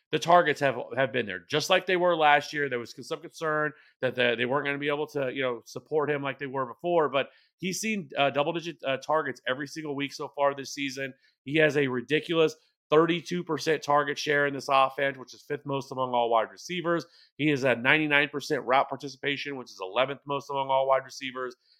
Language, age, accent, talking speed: English, 30-49, American, 215 wpm